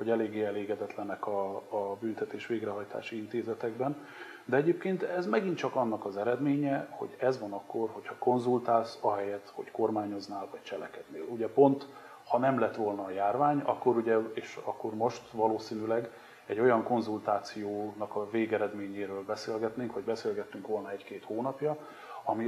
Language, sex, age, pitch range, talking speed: Hungarian, male, 30-49, 105-125 Hz, 140 wpm